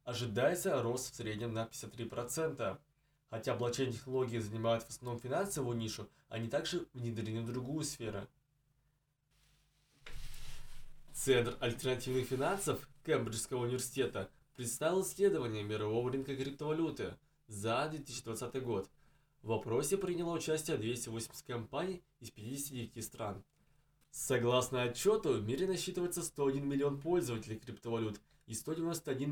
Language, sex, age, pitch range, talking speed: Russian, male, 20-39, 115-145 Hz, 110 wpm